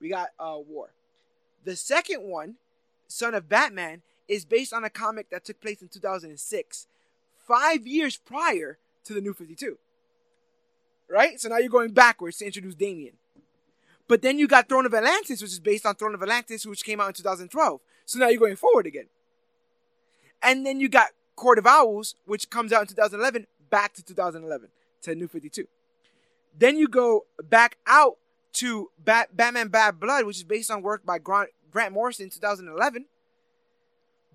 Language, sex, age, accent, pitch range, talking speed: English, male, 20-39, American, 210-270 Hz, 170 wpm